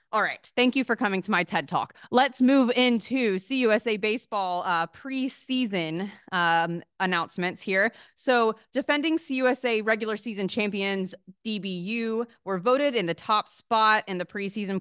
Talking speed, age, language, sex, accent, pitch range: 145 wpm, 20-39, English, female, American, 170-220 Hz